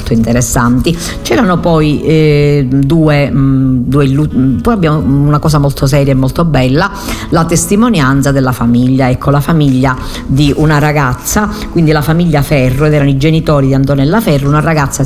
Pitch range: 135-165 Hz